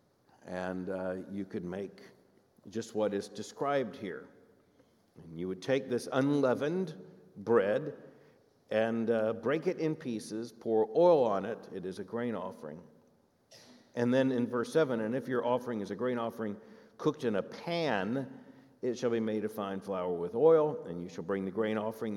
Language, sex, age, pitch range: English, male, 50-69, 105-150 Hz